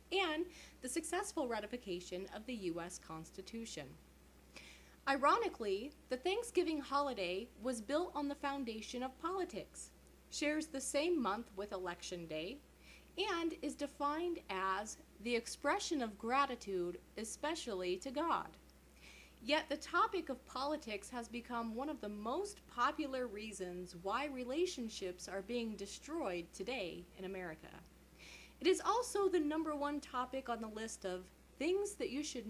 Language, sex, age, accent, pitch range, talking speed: English, female, 30-49, American, 190-290 Hz, 135 wpm